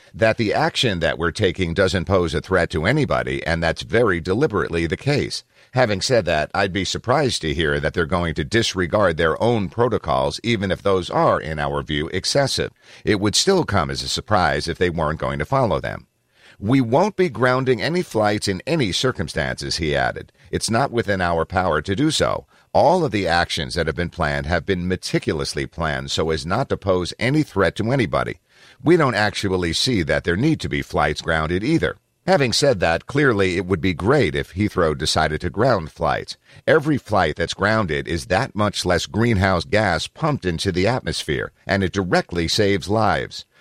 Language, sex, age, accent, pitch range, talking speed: English, male, 50-69, American, 85-110 Hz, 195 wpm